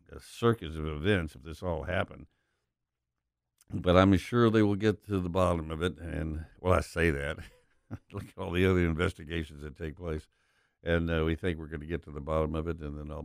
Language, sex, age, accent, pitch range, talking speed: English, male, 60-79, American, 80-100 Hz, 215 wpm